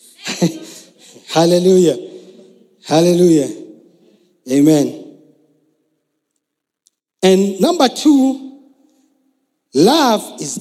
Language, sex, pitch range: English, male, 190-235 Hz